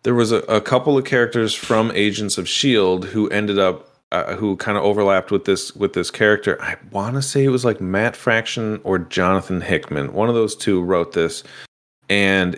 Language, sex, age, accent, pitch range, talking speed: English, male, 30-49, American, 95-115 Hz, 200 wpm